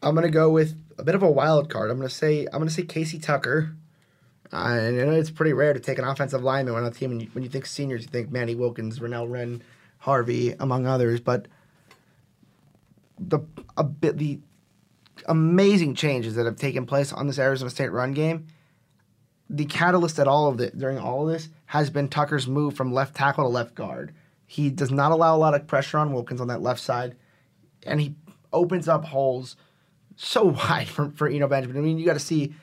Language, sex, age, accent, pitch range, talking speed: English, male, 20-39, American, 130-155 Hz, 210 wpm